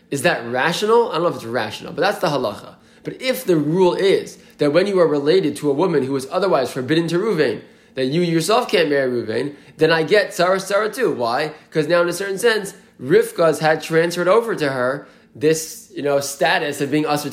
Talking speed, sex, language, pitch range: 220 wpm, male, English, 140-175 Hz